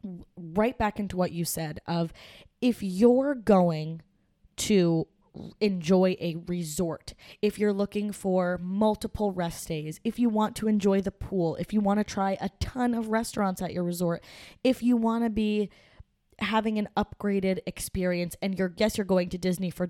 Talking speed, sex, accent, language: 170 wpm, female, American, English